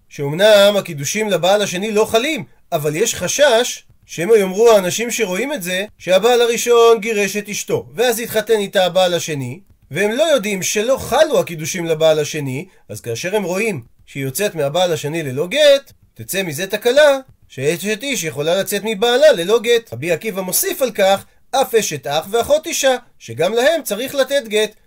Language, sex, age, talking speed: Hebrew, male, 30-49, 160 wpm